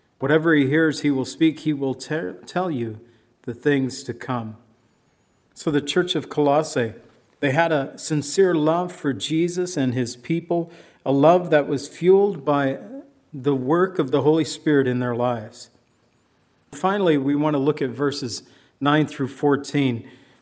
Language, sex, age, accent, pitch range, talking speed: English, male, 50-69, American, 130-155 Hz, 160 wpm